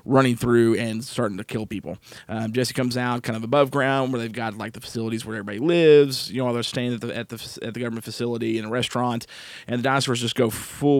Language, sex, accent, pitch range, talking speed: English, male, American, 115-130 Hz, 245 wpm